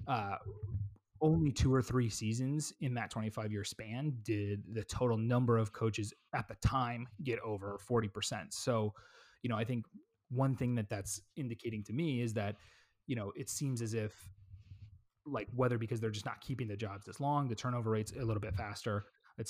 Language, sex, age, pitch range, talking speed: English, male, 30-49, 105-125 Hz, 190 wpm